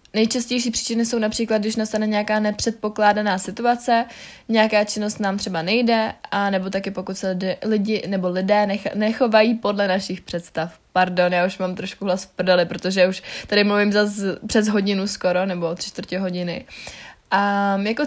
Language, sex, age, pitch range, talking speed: Czech, female, 20-39, 195-220 Hz, 160 wpm